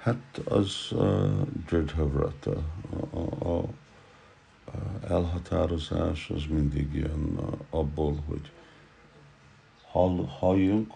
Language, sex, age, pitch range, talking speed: Hungarian, male, 50-69, 75-90 Hz, 60 wpm